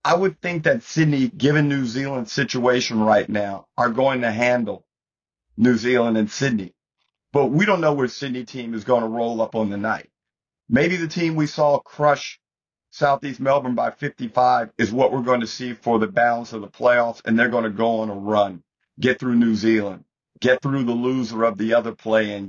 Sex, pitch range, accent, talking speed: male, 115-140 Hz, American, 205 wpm